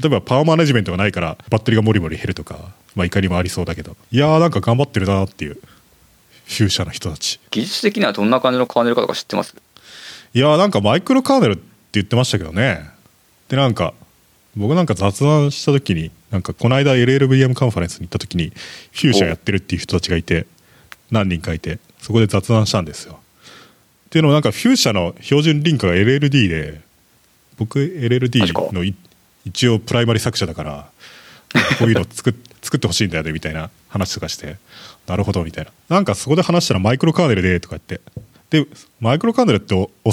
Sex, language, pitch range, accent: male, Japanese, 90-130 Hz, native